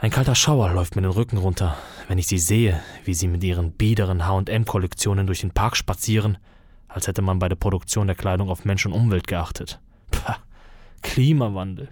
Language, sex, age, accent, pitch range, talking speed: German, male, 20-39, German, 90-105 Hz, 185 wpm